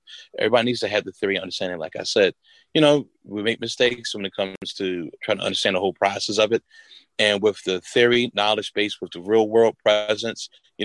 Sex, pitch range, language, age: male, 95-115 Hz, English, 30-49